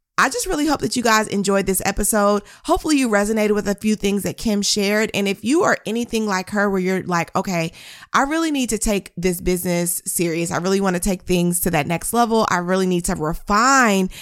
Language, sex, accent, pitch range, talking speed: English, female, American, 180-235 Hz, 230 wpm